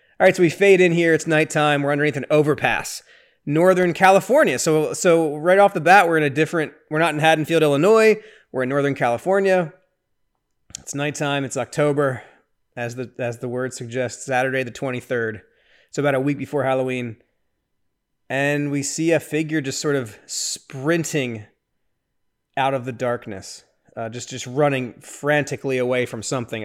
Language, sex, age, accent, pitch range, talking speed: English, male, 20-39, American, 130-175 Hz, 165 wpm